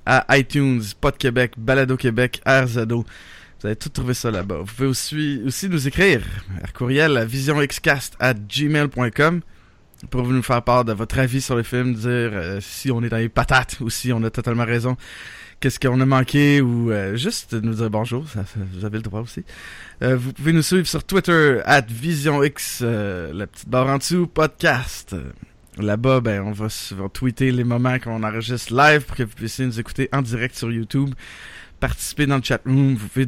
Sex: male